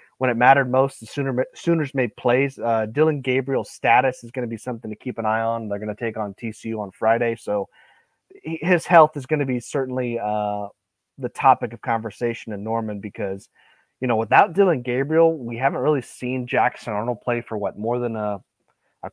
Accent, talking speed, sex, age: American, 205 wpm, male, 30-49